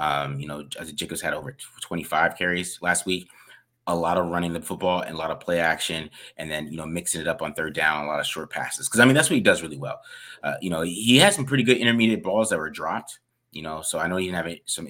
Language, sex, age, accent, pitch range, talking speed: English, male, 30-49, American, 85-105 Hz, 280 wpm